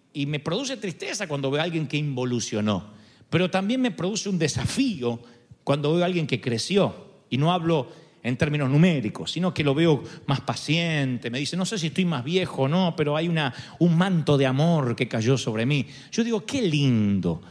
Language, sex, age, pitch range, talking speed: Spanish, male, 40-59, 140-195 Hz, 200 wpm